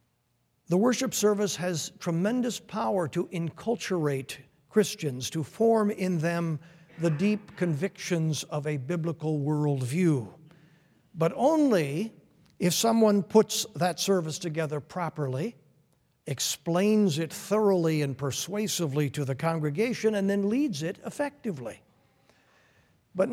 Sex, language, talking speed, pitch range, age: male, English, 110 wpm, 150-210 Hz, 60-79